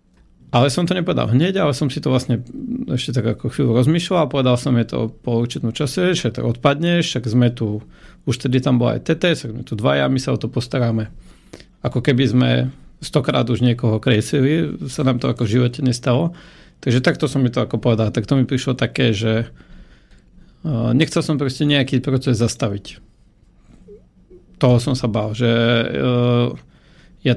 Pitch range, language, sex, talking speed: 115-135 Hz, Slovak, male, 175 wpm